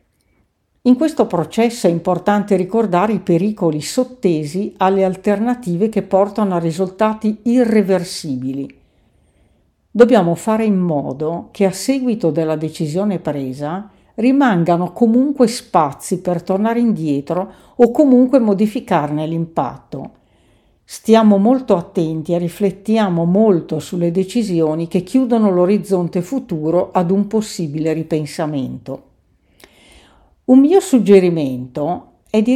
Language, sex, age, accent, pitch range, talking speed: Italian, female, 50-69, native, 160-220 Hz, 105 wpm